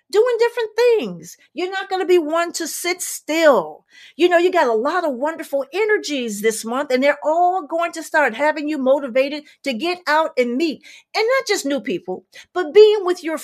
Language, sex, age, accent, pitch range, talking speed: English, female, 50-69, American, 250-335 Hz, 205 wpm